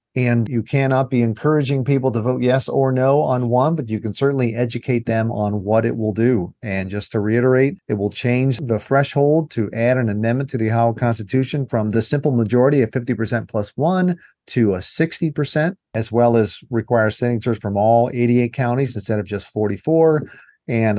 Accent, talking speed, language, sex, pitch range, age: American, 195 wpm, English, male, 105-125 Hz, 40-59